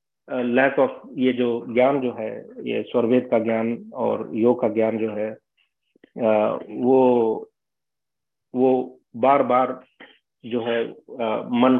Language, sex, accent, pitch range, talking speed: Hindi, male, native, 115-130 Hz, 120 wpm